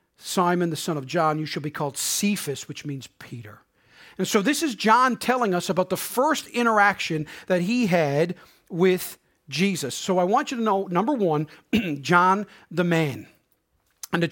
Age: 40-59